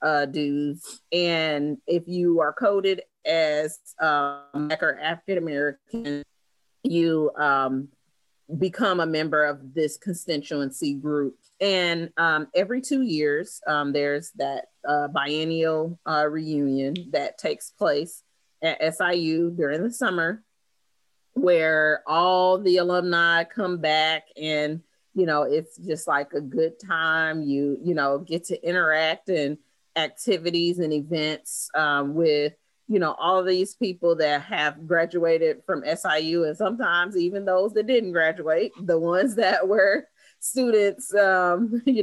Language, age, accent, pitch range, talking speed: English, 30-49, American, 150-175 Hz, 130 wpm